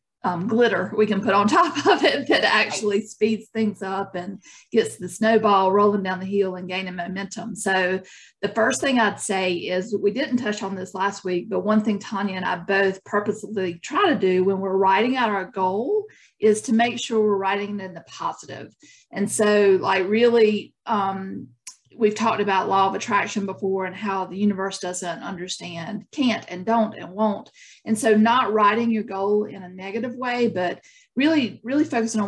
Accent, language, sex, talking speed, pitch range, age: American, English, female, 190 wpm, 190-225 Hz, 40-59